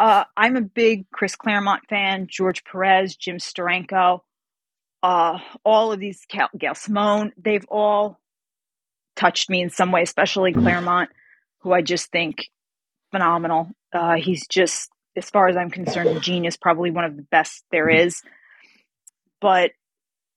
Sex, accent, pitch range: female, American, 175-205 Hz